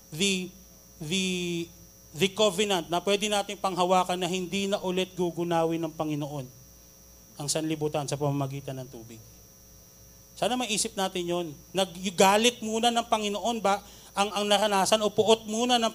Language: Filipino